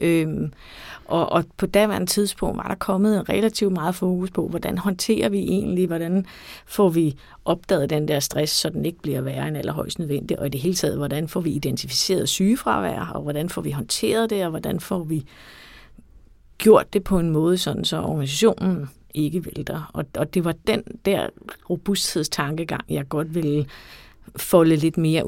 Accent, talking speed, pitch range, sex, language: native, 180 wpm, 150-190 Hz, female, Danish